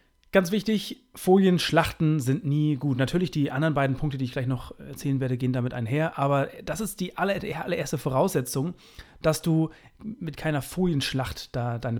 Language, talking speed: German, 170 wpm